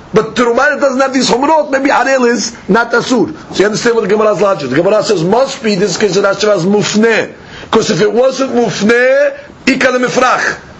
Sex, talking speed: male, 200 wpm